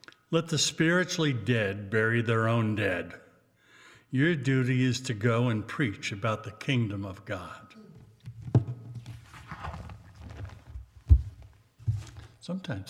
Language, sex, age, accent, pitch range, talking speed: English, male, 60-79, American, 110-135 Hz, 100 wpm